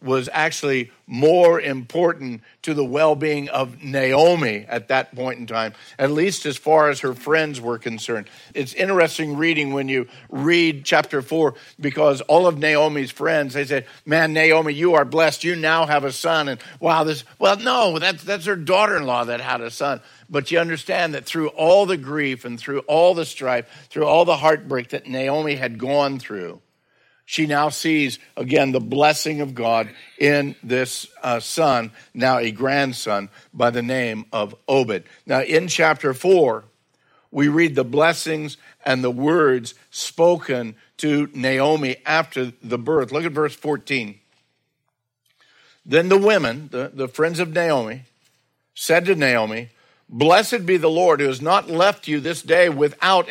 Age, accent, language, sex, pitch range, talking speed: 50-69, American, English, male, 130-160 Hz, 165 wpm